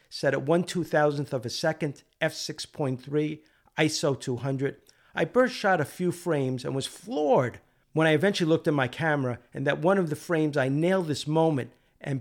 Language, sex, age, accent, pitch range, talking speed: English, male, 50-69, American, 135-165 Hz, 180 wpm